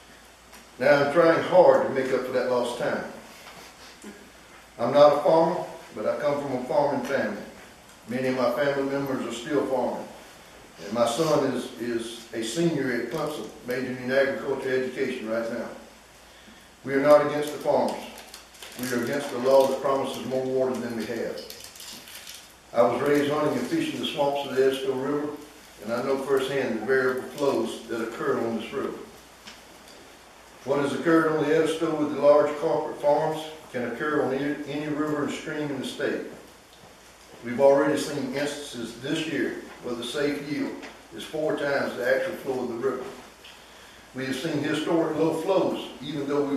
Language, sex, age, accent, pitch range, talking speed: English, male, 60-79, American, 130-150 Hz, 175 wpm